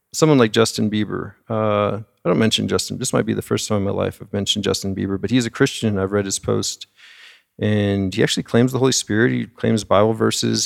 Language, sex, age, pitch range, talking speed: English, male, 40-59, 100-115 Hz, 230 wpm